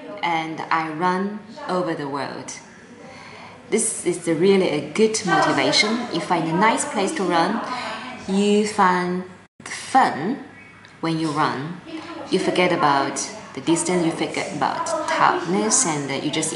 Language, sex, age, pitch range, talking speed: English, female, 20-39, 155-205 Hz, 140 wpm